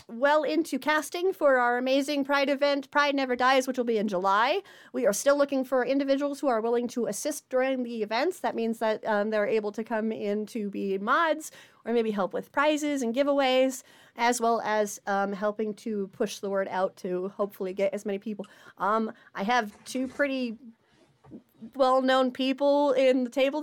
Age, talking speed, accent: 30-49, 190 wpm, American